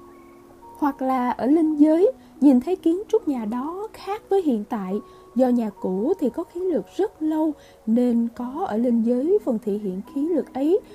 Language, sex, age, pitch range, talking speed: Vietnamese, female, 20-39, 240-330 Hz, 190 wpm